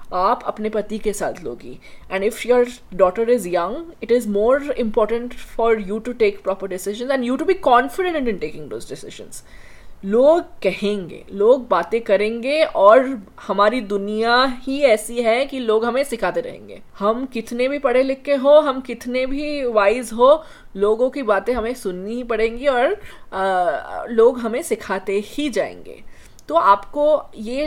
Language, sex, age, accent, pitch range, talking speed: English, female, 20-39, Indian, 210-270 Hz, 130 wpm